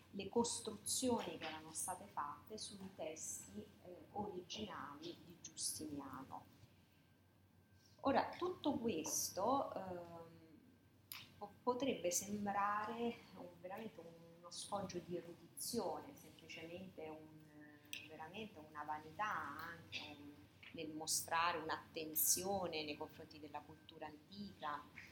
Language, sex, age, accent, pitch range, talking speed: Italian, female, 30-49, native, 155-195 Hz, 90 wpm